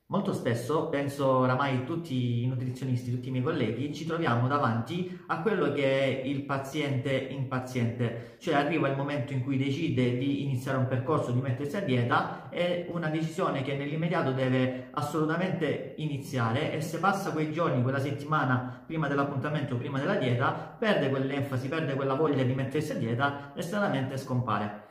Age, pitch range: 40-59, 130-165 Hz